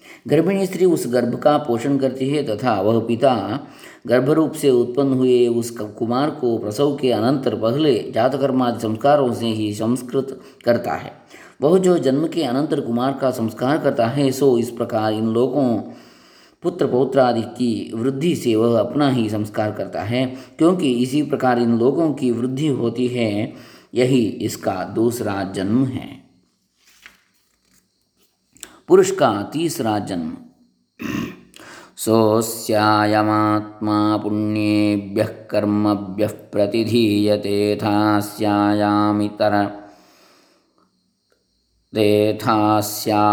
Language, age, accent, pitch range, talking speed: English, 20-39, Indian, 105-130 Hz, 90 wpm